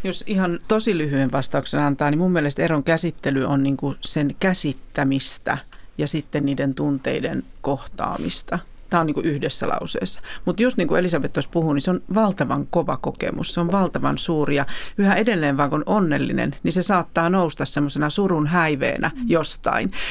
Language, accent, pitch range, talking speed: Finnish, native, 145-190 Hz, 165 wpm